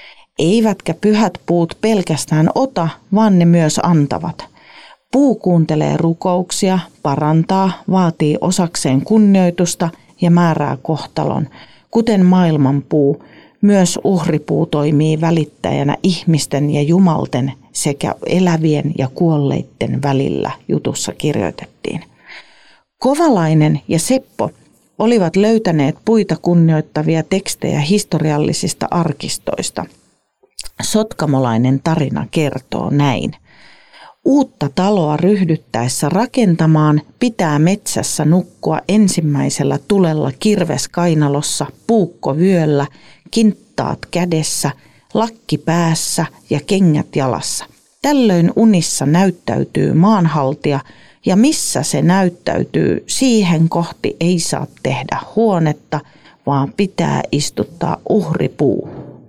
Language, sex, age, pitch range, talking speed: Finnish, female, 40-59, 150-195 Hz, 85 wpm